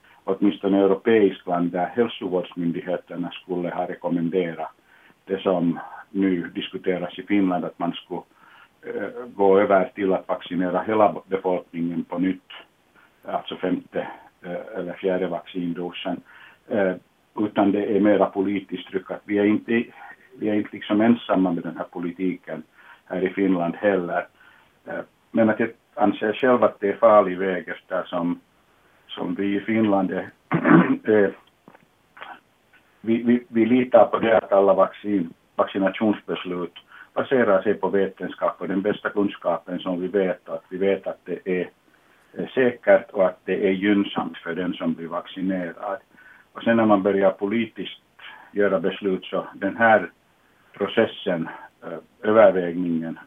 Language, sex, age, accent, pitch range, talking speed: Swedish, male, 60-79, Finnish, 90-105 Hz, 140 wpm